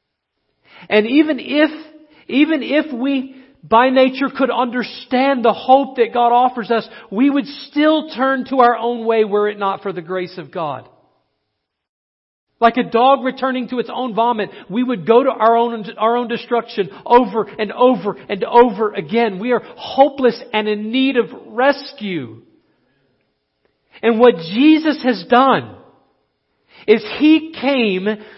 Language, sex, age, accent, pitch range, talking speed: English, male, 50-69, American, 215-265 Hz, 150 wpm